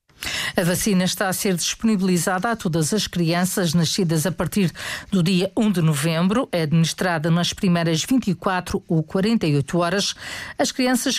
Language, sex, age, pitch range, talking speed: Portuguese, female, 50-69, 175-215 Hz, 150 wpm